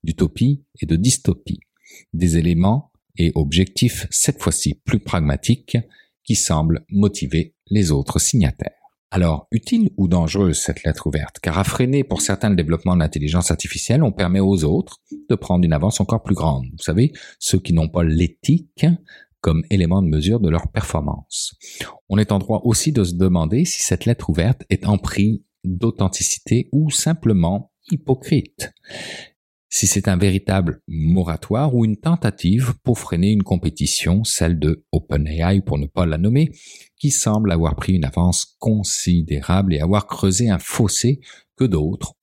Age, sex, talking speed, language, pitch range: 50-69, male, 160 wpm, French, 85-110 Hz